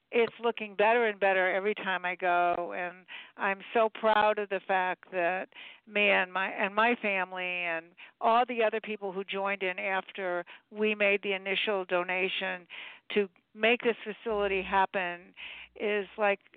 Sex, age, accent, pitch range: female, 60-79, American, 180-215 Hz